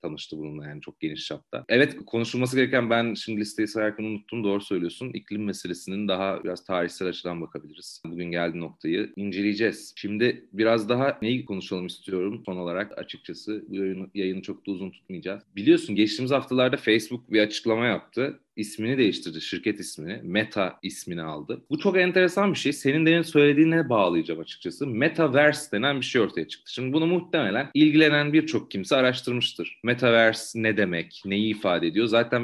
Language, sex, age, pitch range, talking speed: Turkish, male, 40-59, 100-130 Hz, 155 wpm